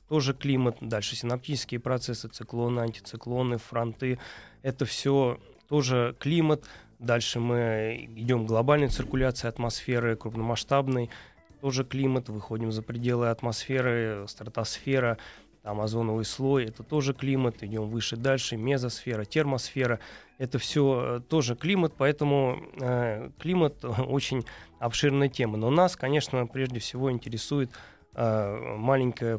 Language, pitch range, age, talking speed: Russian, 115-135 Hz, 20-39, 110 wpm